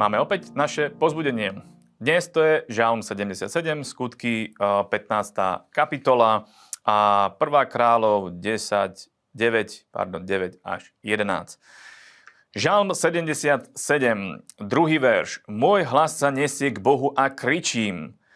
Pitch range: 110-135 Hz